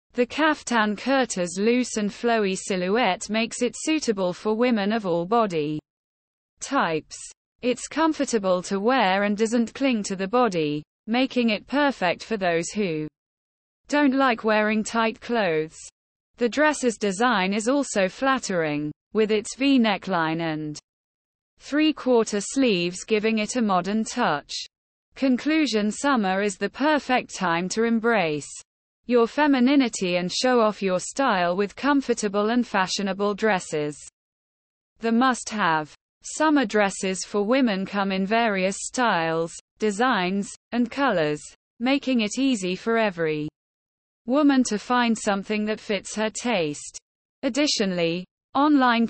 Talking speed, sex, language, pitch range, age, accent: 125 wpm, female, English, 185-245 Hz, 20-39, British